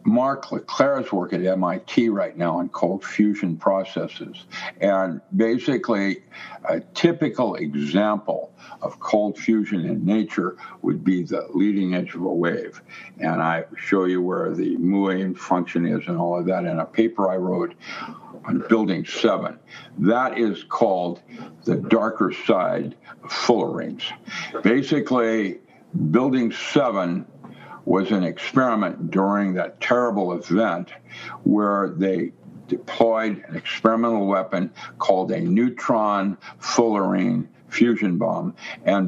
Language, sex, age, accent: English, male, 60-79, American